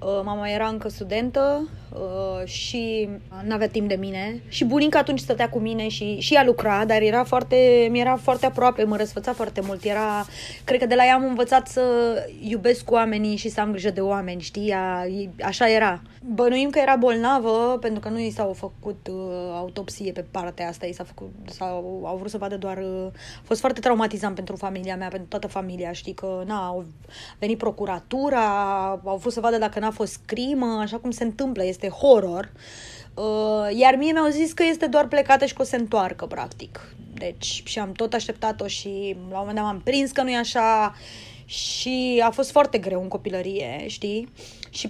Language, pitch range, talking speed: Romanian, 195-245 Hz, 190 wpm